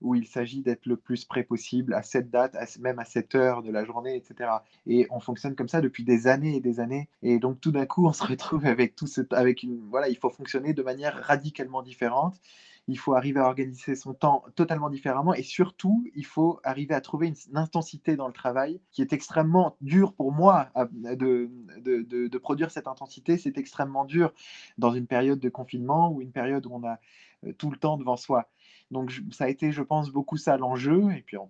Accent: French